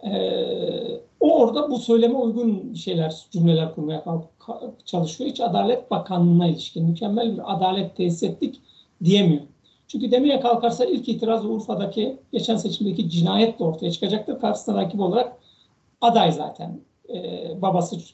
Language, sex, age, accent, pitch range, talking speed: Turkish, male, 60-79, native, 175-235 Hz, 130 wpm